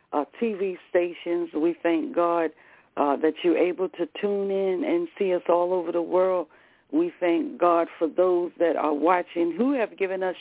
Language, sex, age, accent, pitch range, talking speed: English, female, 60-79, American, 155-195 Hz, 185 wpm